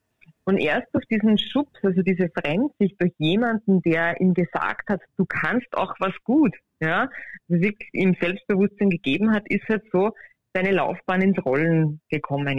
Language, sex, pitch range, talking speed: German, female, 160-200 Hz, 155 wpm